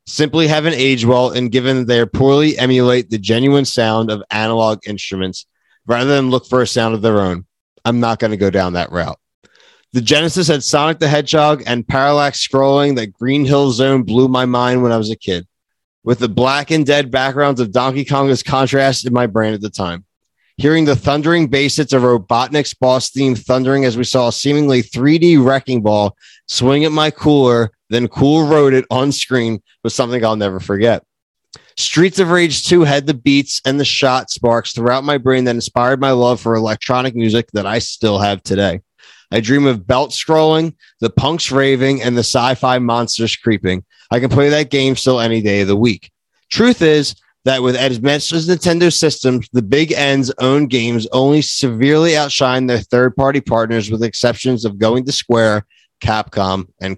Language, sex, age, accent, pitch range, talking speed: English, male, 20-39, American, 115-140 Hz, 190 wpm